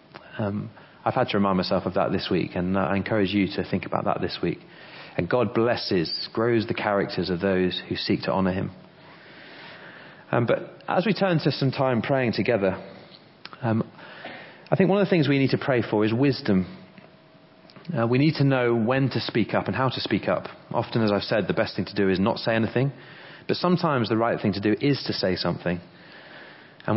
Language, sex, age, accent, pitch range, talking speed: English, male, 30-49, British, 100-135 Hz, 215 wpm